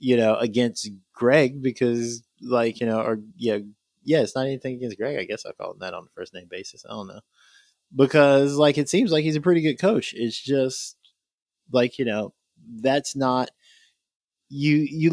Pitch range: 110-145 Hz